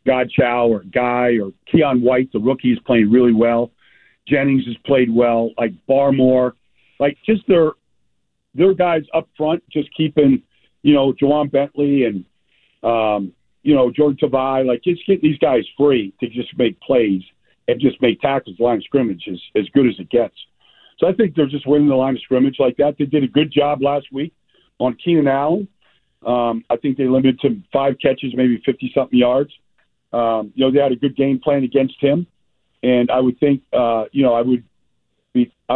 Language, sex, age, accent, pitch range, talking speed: English, male, 50-69, American, 120-145 Hz, 195 wpm